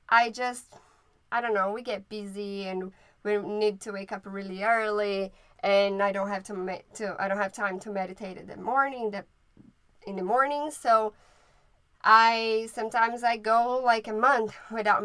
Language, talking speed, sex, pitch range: English, 180 wpm, female, 195-225 Hz